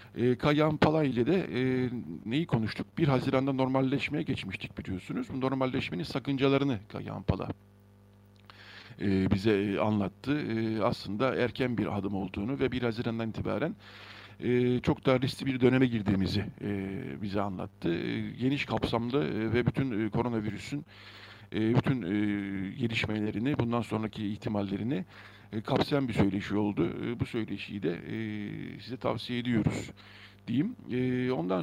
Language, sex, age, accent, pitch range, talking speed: Turkish, male, 50-69, native, 105-130 Hz, 120 wpm